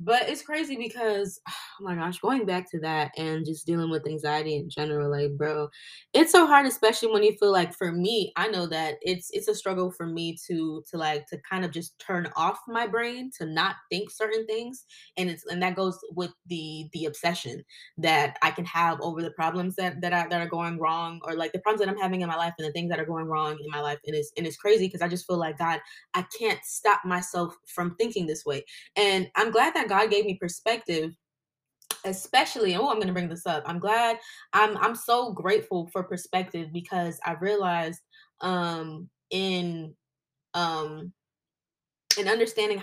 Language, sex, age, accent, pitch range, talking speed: English, female, 20-39, American, 165-215 Hz, 205 wpm